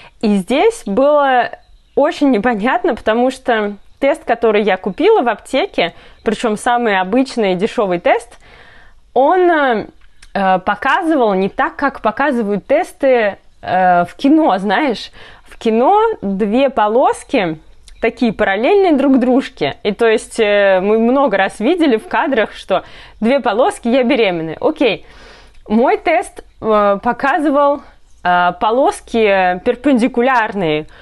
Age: 20-39